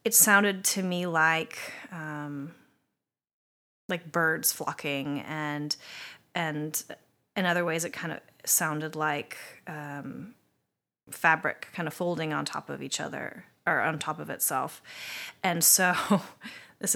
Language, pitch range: English, 160-205 Hz